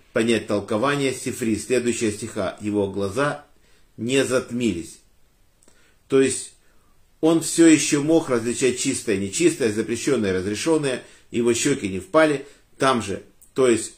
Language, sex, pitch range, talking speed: Russian, male, 105-135 Hz, 120 wpm